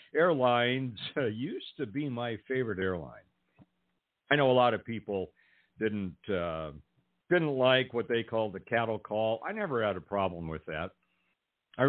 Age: 50-69